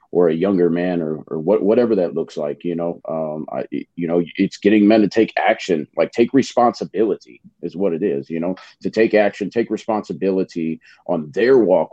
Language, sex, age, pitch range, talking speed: English, male, 40-59, 90-110 Hz, 195 wpm